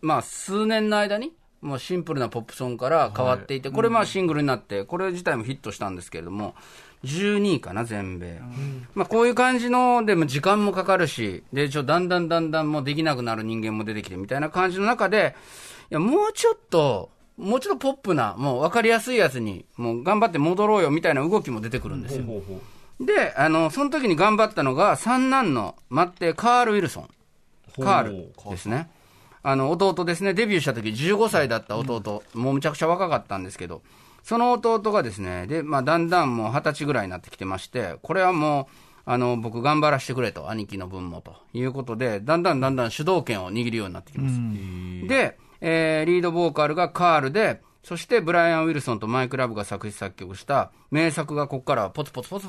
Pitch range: 115-185 Hz